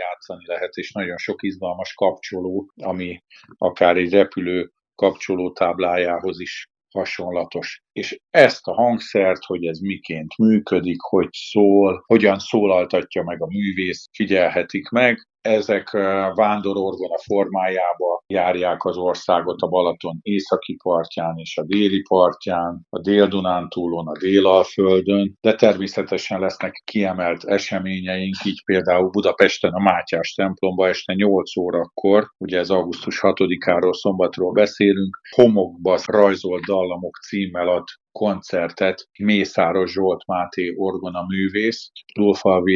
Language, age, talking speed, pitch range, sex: Hungarian, 50-69, 115 wpm, 90-100 Hz, male